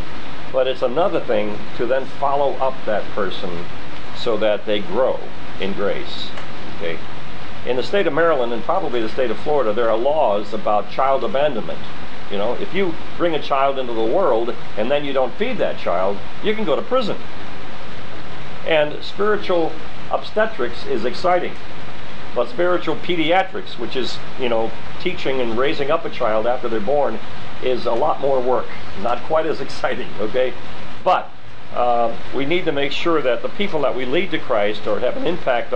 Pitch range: 115-160 Hz